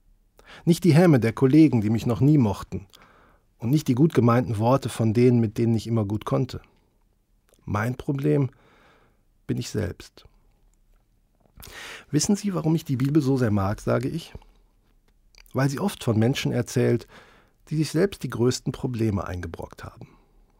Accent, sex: German, male